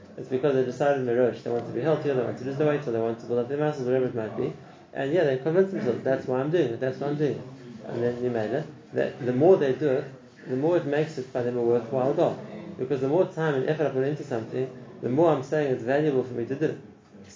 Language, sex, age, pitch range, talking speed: English, male, 30-49, 120-150 Hz, 290 wpm